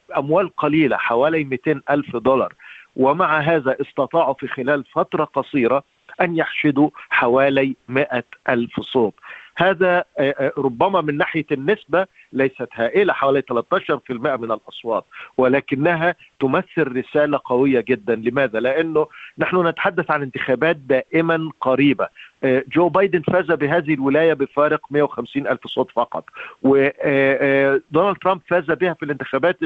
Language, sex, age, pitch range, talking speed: Arabic, male, 50-69, 135-170 Hz, 120 wpm